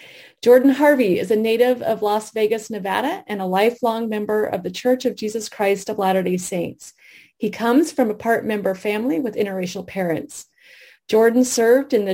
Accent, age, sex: American, 30-49, female